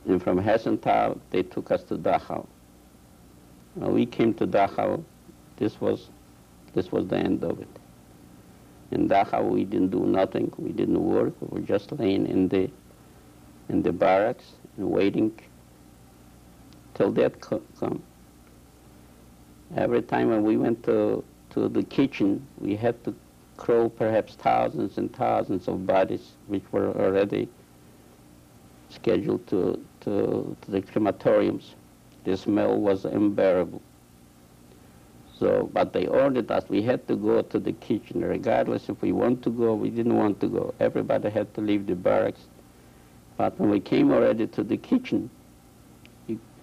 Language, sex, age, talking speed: English, male, 60-79, 145 wpm